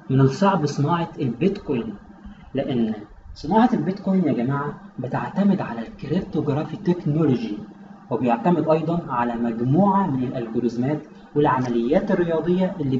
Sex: male